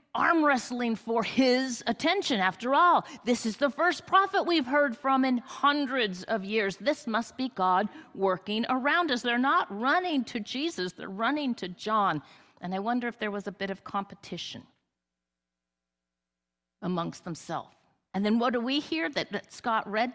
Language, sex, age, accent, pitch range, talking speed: English, female, 50-69, American, 165-265 Hz, 170 wpm